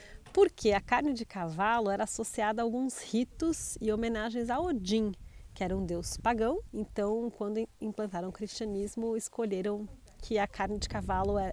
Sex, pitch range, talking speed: female, 195-245 Hz, 155 wpm